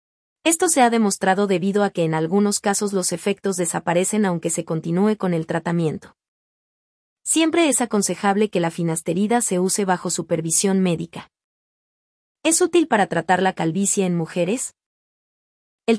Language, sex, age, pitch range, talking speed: Spanish, female, 30-49, 175-215 Hz, 145 wpm